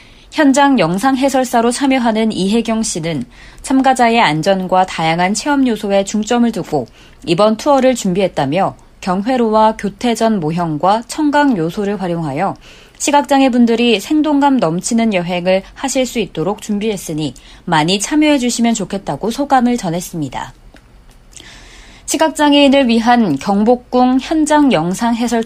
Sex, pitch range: female, 185-255 Hz